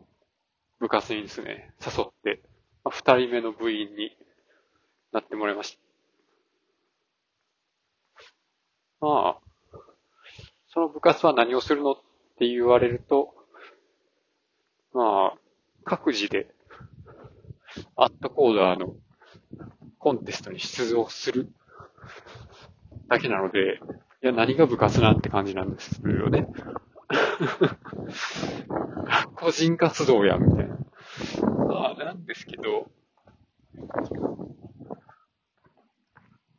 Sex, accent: male, native